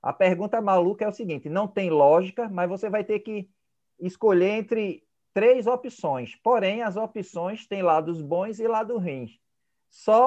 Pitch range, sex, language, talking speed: 165-215 Hz, male, Portuguese, 165 wpm